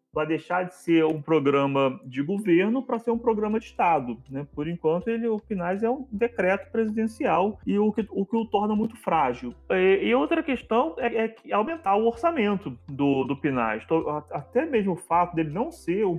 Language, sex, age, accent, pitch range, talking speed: Portuguese, male, 30-49, Brazilian, 145-225 Hz, 200 wpm